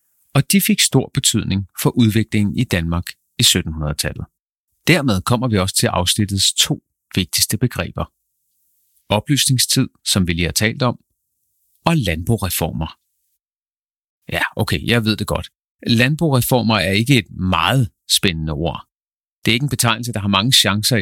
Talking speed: 145 wpm